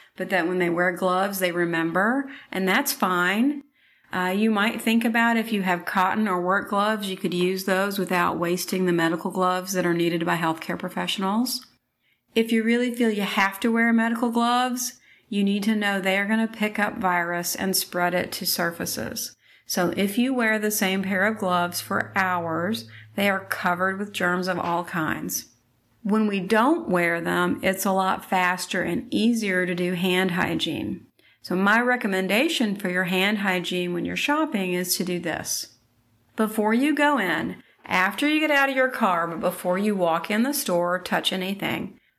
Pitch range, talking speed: 180-220 Hz, 190 wpm